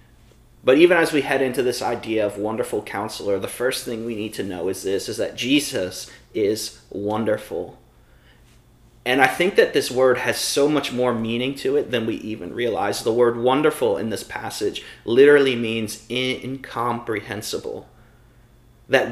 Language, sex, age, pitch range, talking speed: English, male, 30-49, 115-140 Hz, 165 wpm